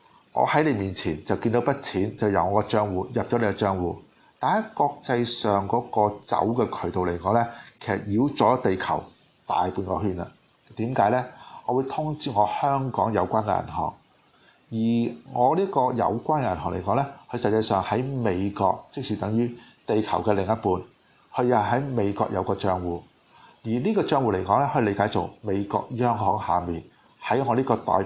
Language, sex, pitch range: Chinese, male, 100-120 Hz